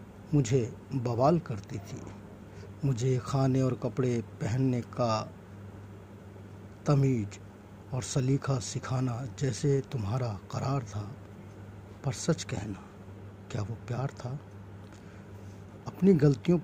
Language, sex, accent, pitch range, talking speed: Hindi, male, native, 100-135 Hz, 95 wpm